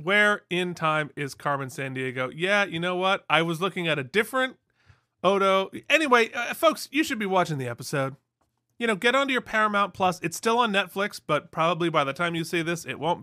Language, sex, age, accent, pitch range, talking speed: English, male, 30-49, American, 130-205 Hz, 220 wpm